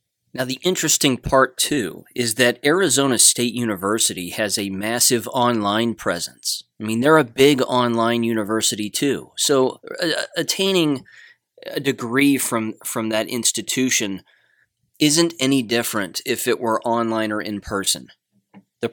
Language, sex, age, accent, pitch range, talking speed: English, male, 30-49, American, 105-125 Hz, 135 wpm